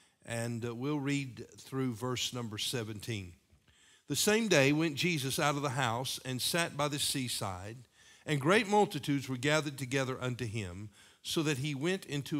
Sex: male